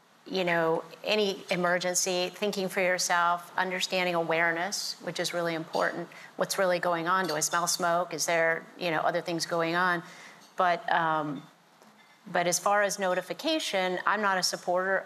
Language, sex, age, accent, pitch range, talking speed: English, female, 40-59, American, 170-190 Hz, 160 wpm